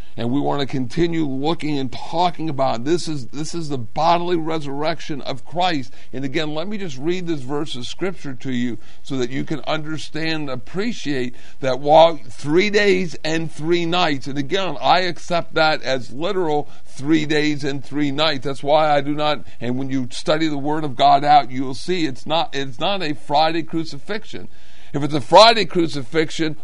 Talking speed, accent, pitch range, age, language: 185 wpm, American, 140-170 Hz, 50-69, English